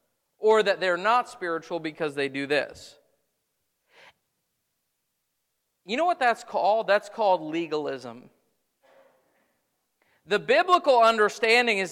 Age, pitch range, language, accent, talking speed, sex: 40-59, 185-250 Hz, English, American, 105 wpm, male